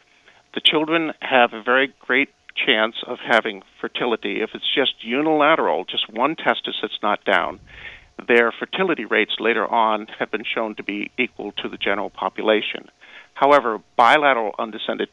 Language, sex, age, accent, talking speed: English, male, 50-69, American, 150 wpm